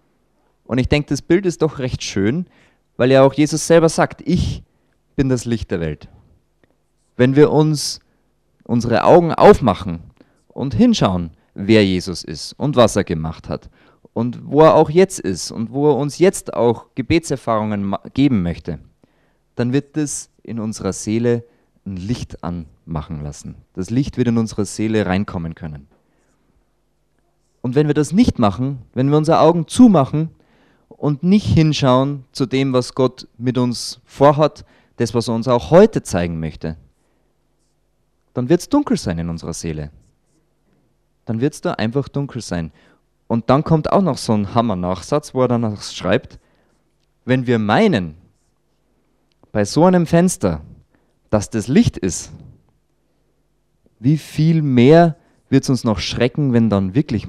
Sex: male